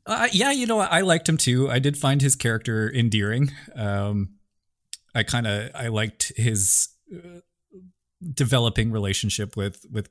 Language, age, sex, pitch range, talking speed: English, 20-39, male, 90-120 Hz, 155 wpm